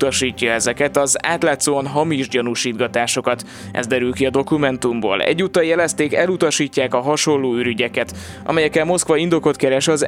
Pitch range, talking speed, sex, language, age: 125-155 Hz, 125 wpm, male, Hungarian, 20-39